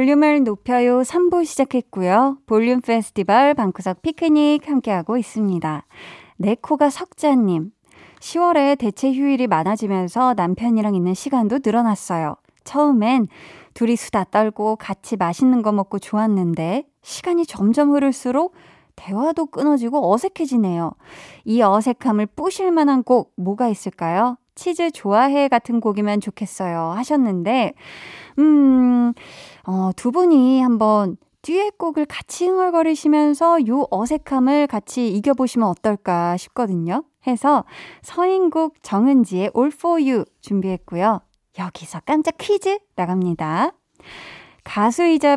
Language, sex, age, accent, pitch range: Korean, female, 20-39, native, 205-295 Hz